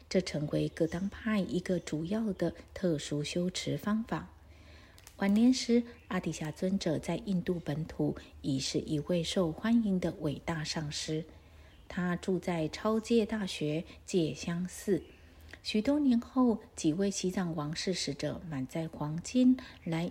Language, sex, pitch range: Chinese, female, 150-195 Hz